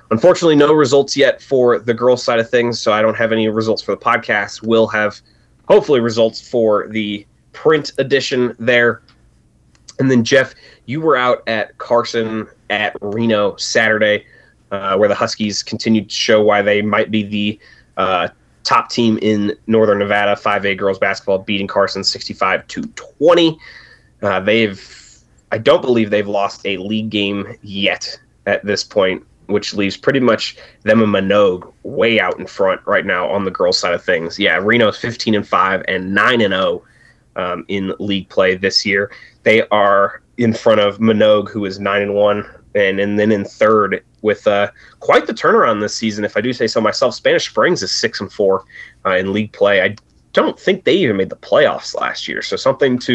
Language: English